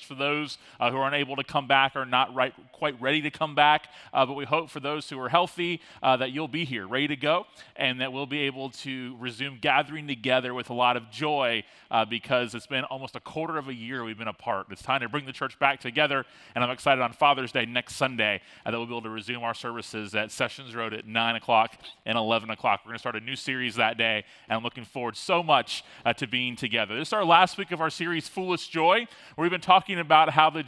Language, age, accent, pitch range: English, 30-49, American, 130-180 Hz